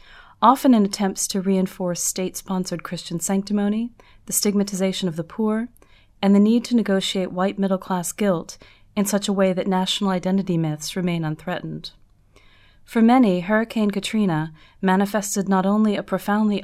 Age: 30-49